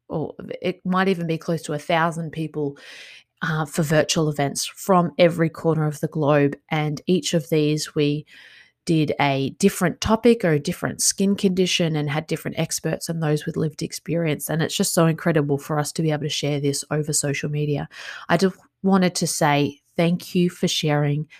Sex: female